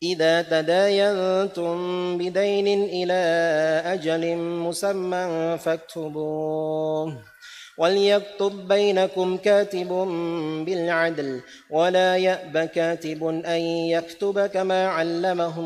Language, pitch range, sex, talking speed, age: Indonesian, 165-195 Hz, male, 70 wpm, 30-49